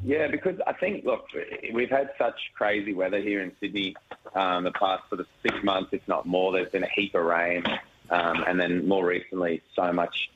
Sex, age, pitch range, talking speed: male, 20-39, 85-95 Hz, 210 wpm